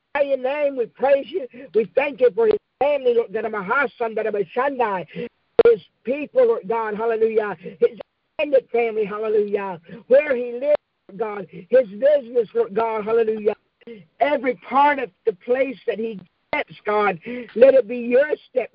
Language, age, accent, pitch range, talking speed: English, 50-69, American, 210-275 Hz, 145 wpm